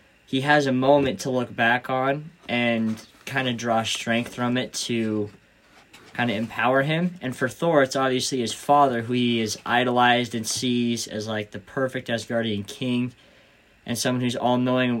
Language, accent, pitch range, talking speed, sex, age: English, American, 115-135 Hz, 170 wpm, male, 20-39